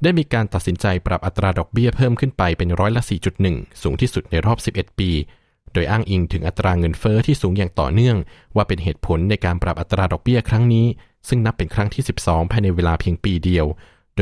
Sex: male